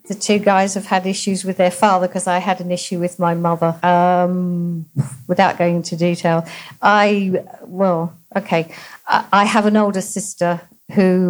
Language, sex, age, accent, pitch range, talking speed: English, female, 50-69, British, 175-205 Hz, 170 wpm